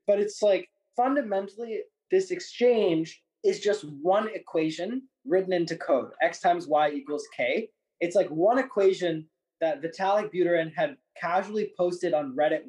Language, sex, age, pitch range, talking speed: English, male, 20-39, 155-205 Hz, 140 wpm